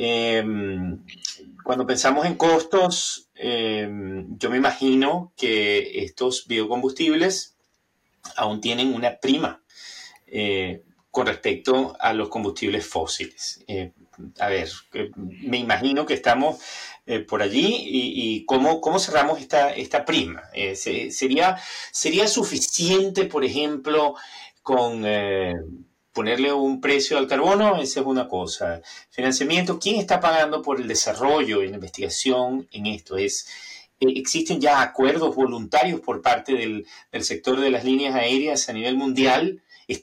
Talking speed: 125 wpm